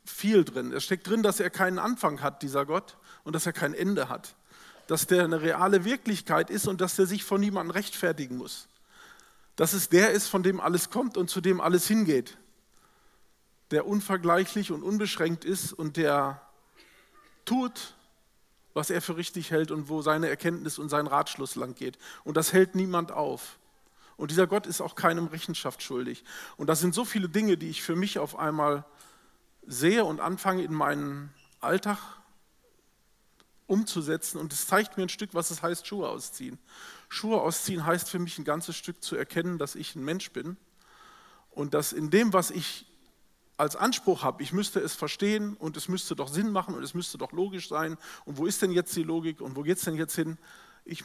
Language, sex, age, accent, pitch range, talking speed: German, male, 40-59, German, 155-195 Hz, 195 wpm